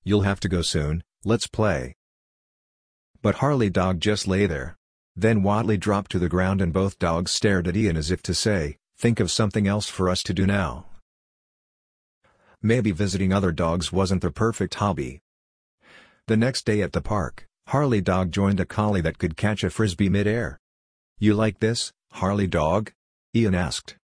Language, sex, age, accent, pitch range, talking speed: English, male, 50-69, American, 90-110 Hz, 175 wpm